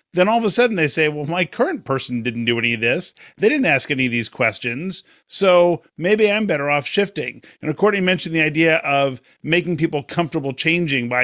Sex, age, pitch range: male, 50-69, 145-190 Hz